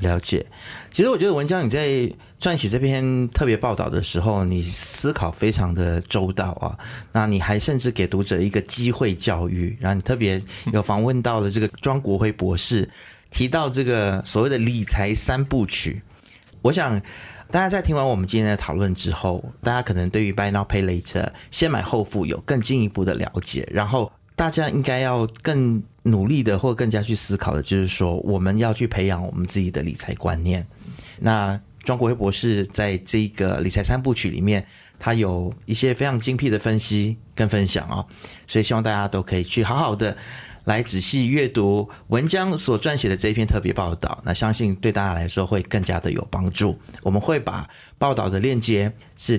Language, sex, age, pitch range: Chinese, male, 30-49, 95-120 Hz